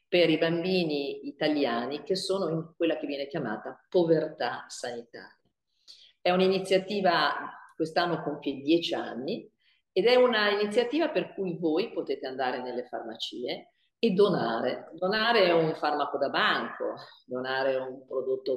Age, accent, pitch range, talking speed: 50-69, native, 135-190 Hz, 125 wpm